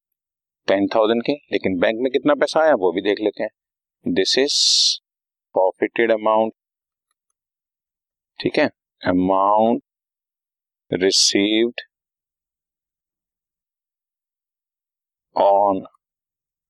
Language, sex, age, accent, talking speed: Hindi, male, 50-69, native, 80 wpm